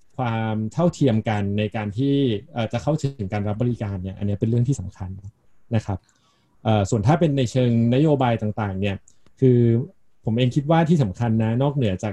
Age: 20-39